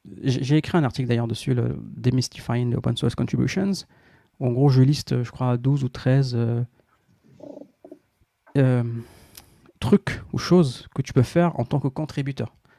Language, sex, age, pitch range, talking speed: Arabic, male, 40-59, 120-145 Hz, 160 wpm